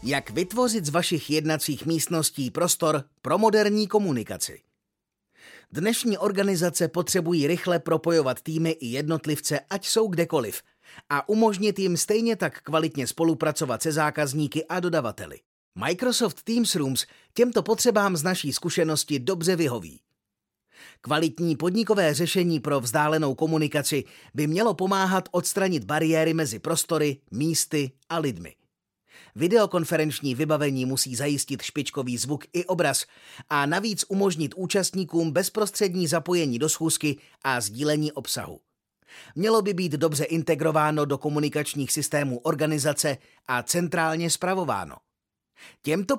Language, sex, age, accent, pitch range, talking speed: Czech, male, 30-49, native, 150-190 Hz, 115 wpm